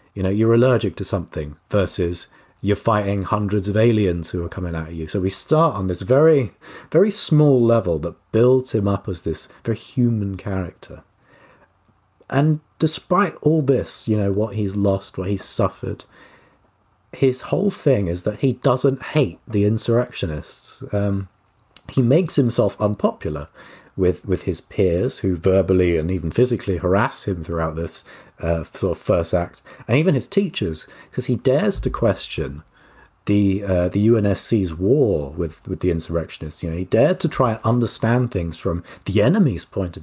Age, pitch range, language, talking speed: 30-49, 95-130 Hz, English, 170 wpm